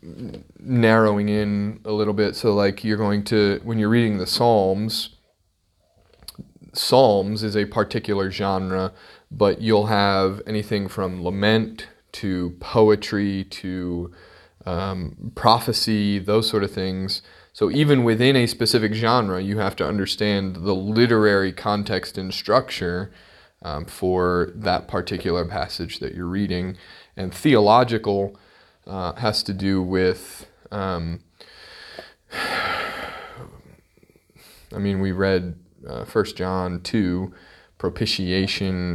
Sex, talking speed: male, 115 wpm